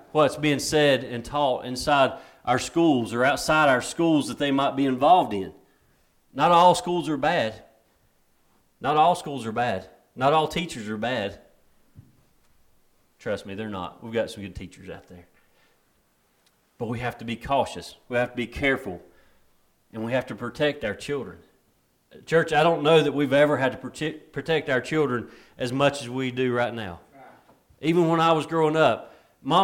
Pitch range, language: 120-165 Hz, English